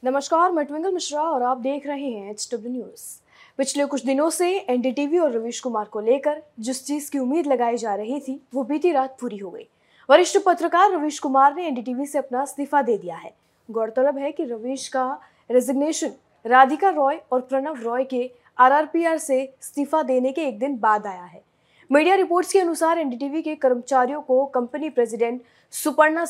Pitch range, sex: 245-300 Hz, female